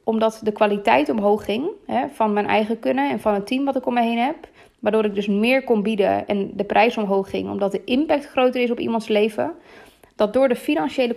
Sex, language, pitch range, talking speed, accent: female, Dutch, 210-245 Hz, 225 wpm, Dutch